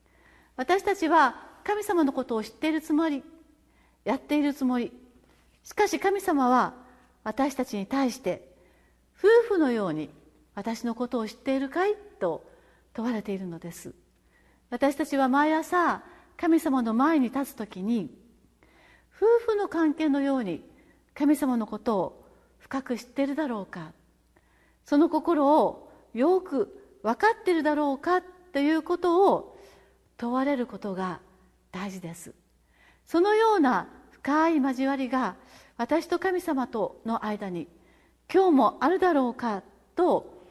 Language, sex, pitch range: Japanese, female, 220-330 Hz